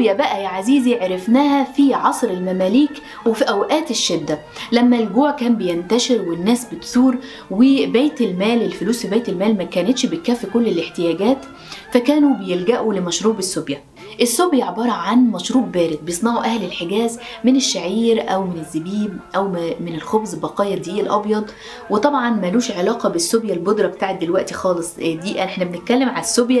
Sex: female